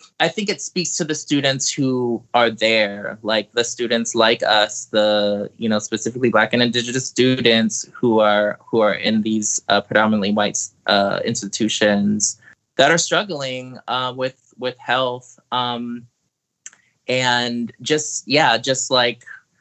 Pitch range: 110-130 Hz